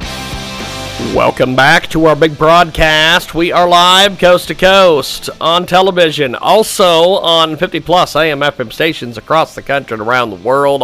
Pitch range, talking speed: 160-205 Hz, 155 wpm